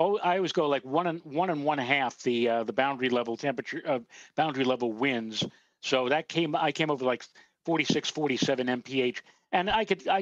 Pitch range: 125-155 Hz